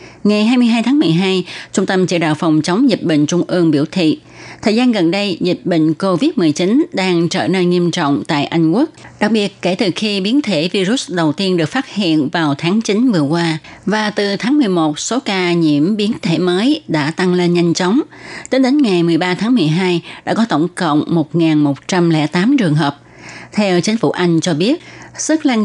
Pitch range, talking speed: 165-220 Hz, 200 wpm